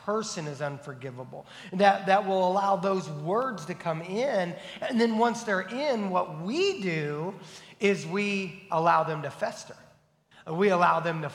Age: 30-49